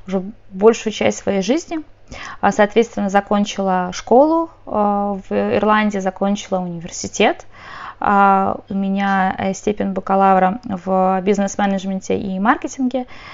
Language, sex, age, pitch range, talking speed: Russian, female, 20-39, 195-235 Hz, 90 wpm